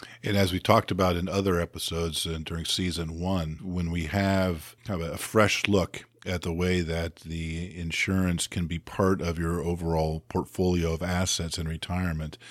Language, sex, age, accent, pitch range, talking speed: English, male, 50-69, American, 85-95 Hz, 180 wpm